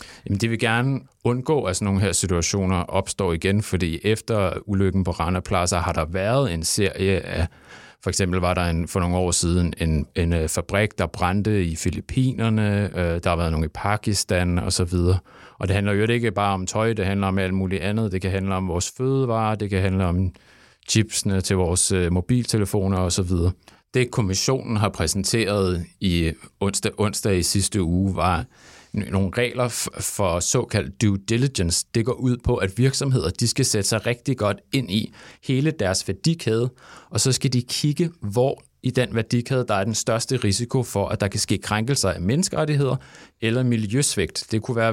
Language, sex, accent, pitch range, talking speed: English, male, Danish, 90-115 Hz, 185 wpm